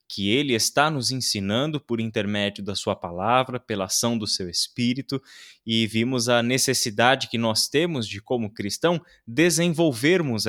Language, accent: Portuguese, Brazilian